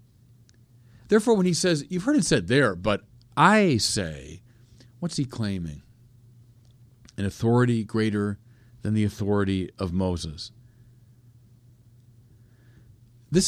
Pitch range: 115-130 Hz